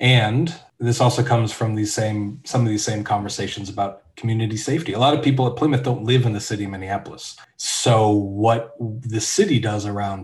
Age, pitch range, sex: 30-49, 105-125 Hz, male